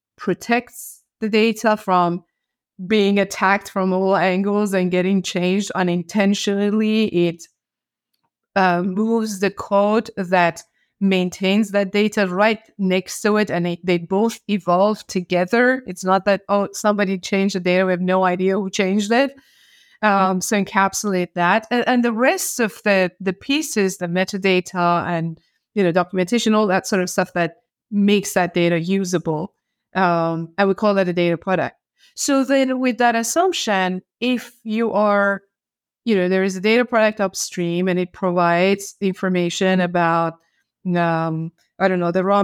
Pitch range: 180-210 Hz